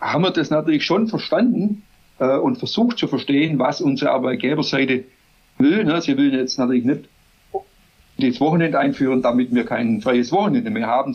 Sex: male